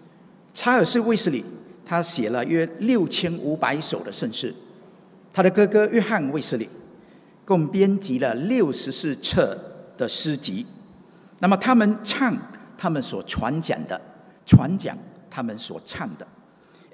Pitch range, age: 170-220 Hz, 50-69